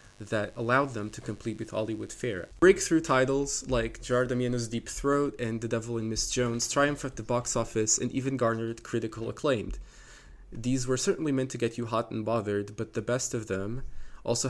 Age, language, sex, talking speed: 20-39, English, male, 195 wpm